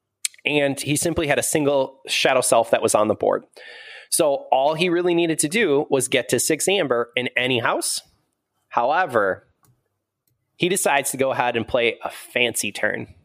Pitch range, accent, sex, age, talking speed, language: 120-160 Hz, American, male, 20-39, 175 wpm, English